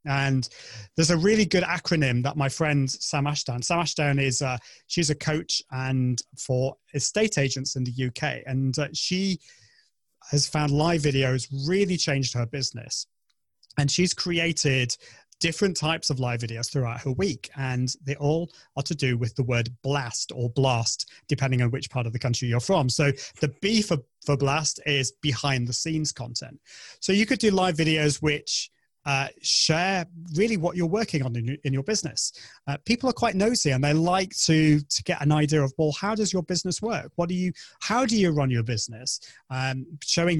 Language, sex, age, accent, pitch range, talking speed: English, male, 30-49, British, 130-170 Hz, 190 wpm